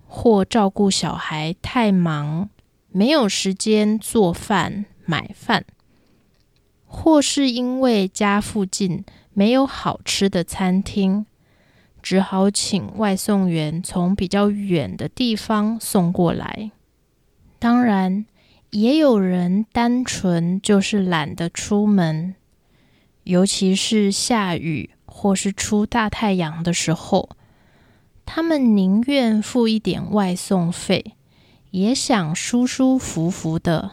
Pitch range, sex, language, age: 180-220 Hz, female, Japanese, 20-39